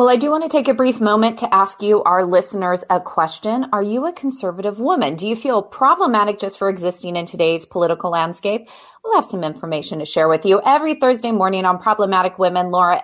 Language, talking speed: English, 215 wpm